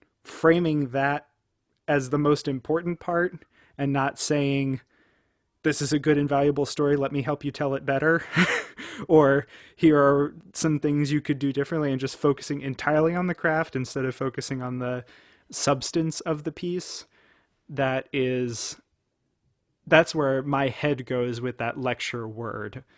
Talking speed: 155 wpm